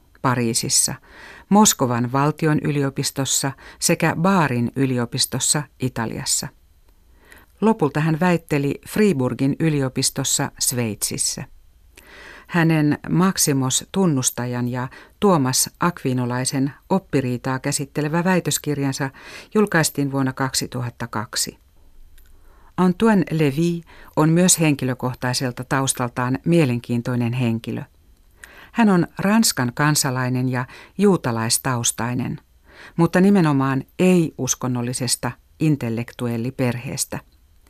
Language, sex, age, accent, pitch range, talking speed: Finnish, female, 60-79, native, 125-155 Hz, 70 wpm